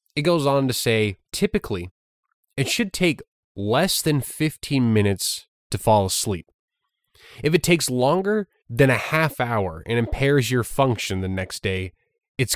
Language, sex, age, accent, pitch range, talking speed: English, male, 20-39, American, 95-130 Hz, 155 wpm